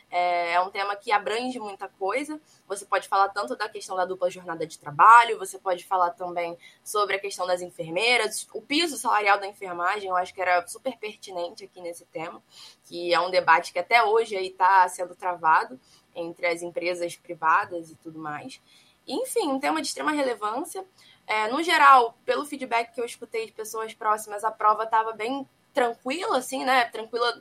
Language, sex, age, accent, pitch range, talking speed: Portuguese, female, 10-29, Brazilian, 195-255 Hz, 180 wpm